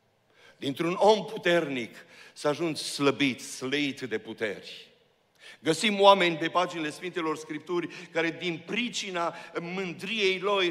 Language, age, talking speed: Romanian, 60-79, 105 wpm